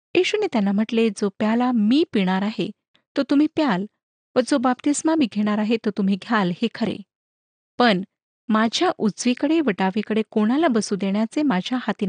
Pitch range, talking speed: 200-270 Hz, 150 wpm